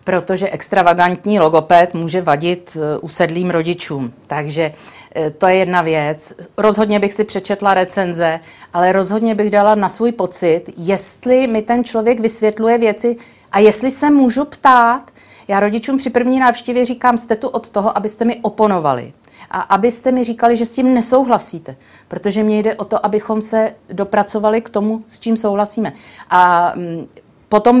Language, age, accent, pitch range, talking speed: Czech, 40-59, native, 175-235 Hz, 155 wpm